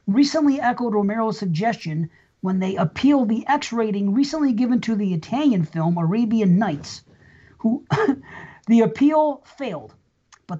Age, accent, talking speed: 40-59, American, 125 wpm